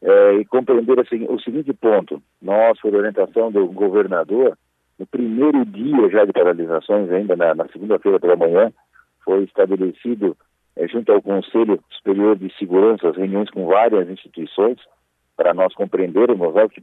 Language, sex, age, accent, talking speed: Portuguese, male, 50-69, Brazilian, 145 wpm